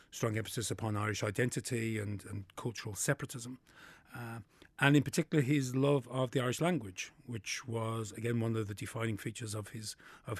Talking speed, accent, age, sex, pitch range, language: 175 wpm, British, 30-49, male, 115-140 Hz, English